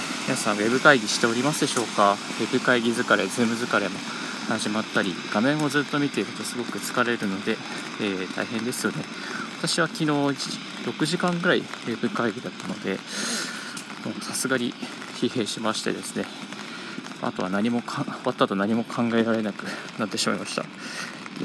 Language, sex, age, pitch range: Japanese, male, 20-39, 110-150 Hz